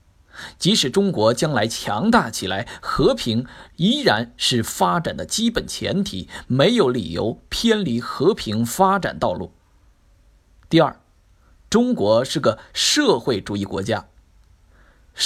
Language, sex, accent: Chinese, male, native